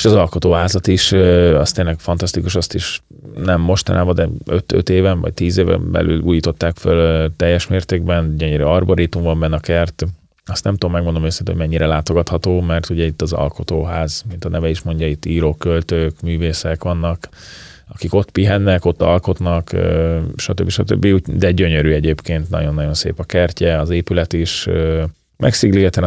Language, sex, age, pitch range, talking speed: Hungarian, male, 30-49, 85-95 Hz, 160 wpm